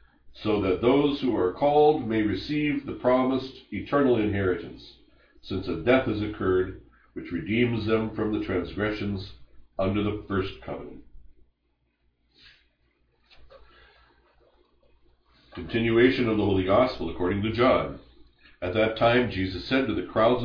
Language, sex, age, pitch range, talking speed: English, male, 60-79, 85-125 Hz, 125 wpm